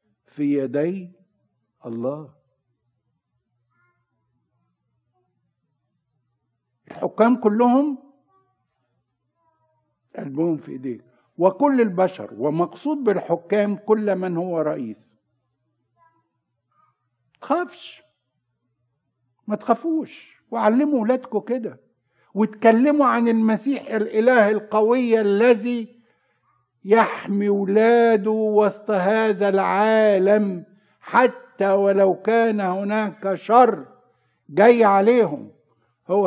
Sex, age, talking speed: male, 60-79, 70 wpm